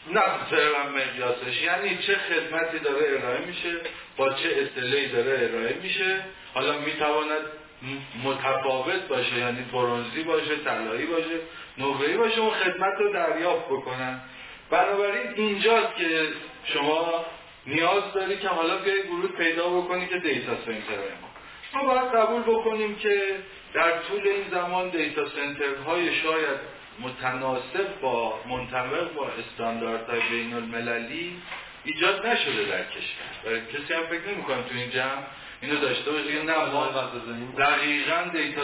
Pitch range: 140-195 Hz